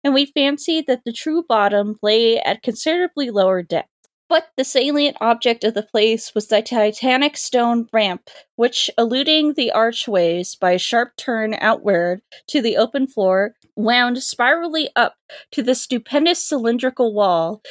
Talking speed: 155 wpm